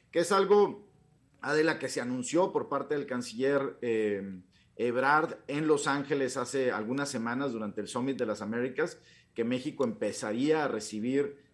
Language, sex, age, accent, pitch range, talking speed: Spanish, male, 40-59, Mexican, 120-160 Hz, 155 wpm